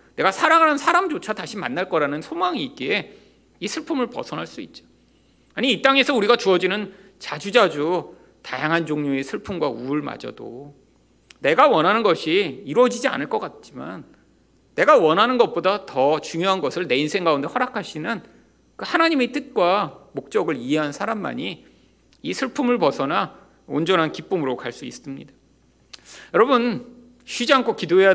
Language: Korean